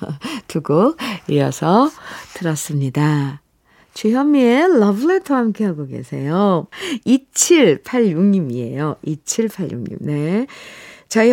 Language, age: Korean, 50-69